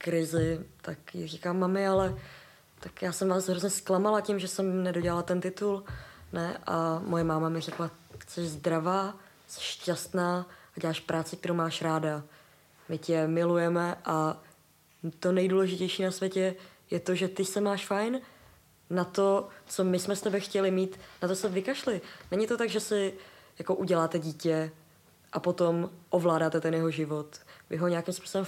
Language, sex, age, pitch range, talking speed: Czech, female, 20-39, 160-185 Hz, 160 wpm